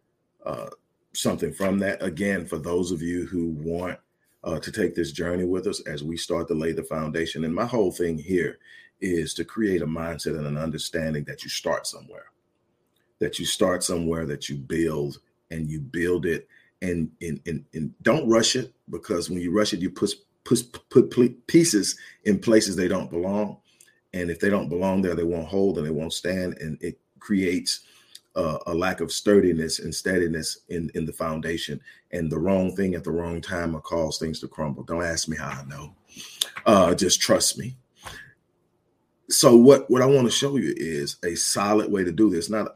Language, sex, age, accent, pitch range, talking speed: English, male, 40-59, American, 80-100 Hz, 200 wpm